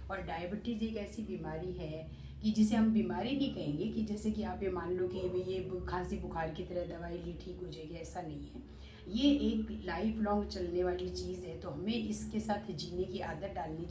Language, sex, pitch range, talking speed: Hindi, female, 175-220 Hz, 210 wpm